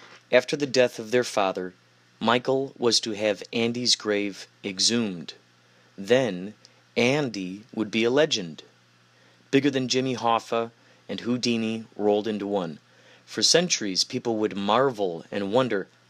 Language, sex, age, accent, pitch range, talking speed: English, male, 30-49, American, 95-130 Hz, 130 wpm